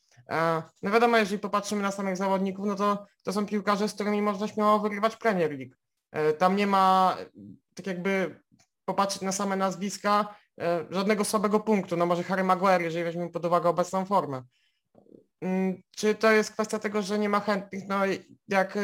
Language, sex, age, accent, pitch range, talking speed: Polish, male, 20-39, native, 175-195 Hz, 165 wpm